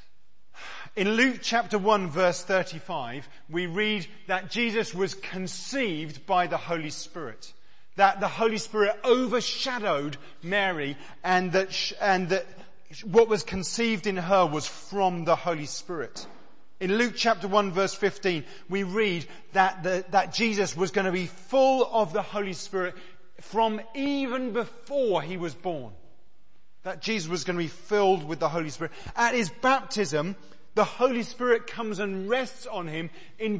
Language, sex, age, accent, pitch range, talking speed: English, male, 40-59, British, 180-225 Hz, 150 wpm